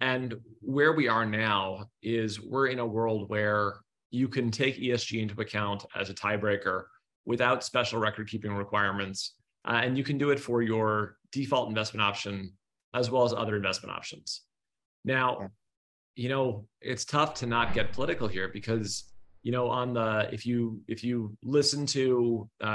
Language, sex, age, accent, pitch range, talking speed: English, male, 30-49, American, 105-120 Hz, 170 wpm